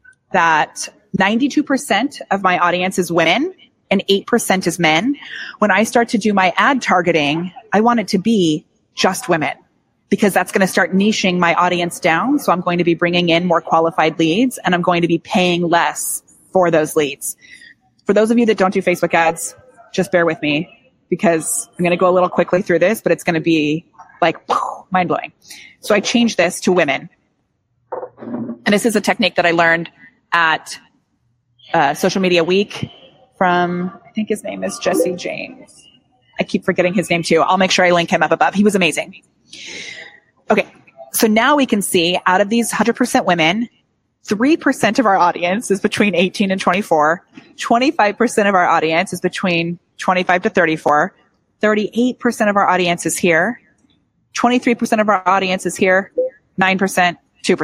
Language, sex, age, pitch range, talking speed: English, female, 20-39, 175-220 Hz, 175 wpm